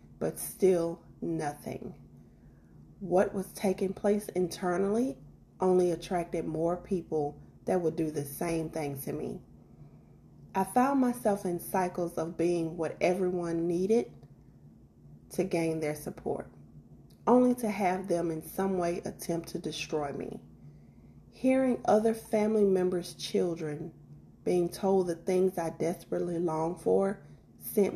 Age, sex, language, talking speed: 30-49, female, English, 125 wpm